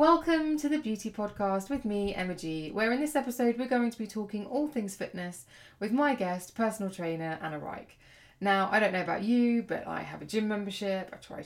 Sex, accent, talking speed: female, British, 220 wpm